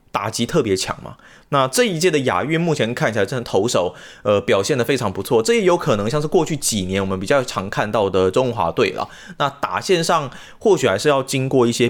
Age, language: 20-39, Chinese